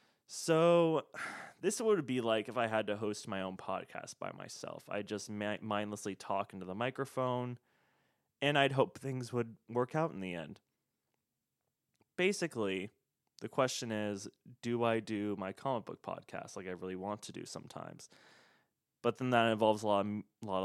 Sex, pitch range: male, 100-125 Hz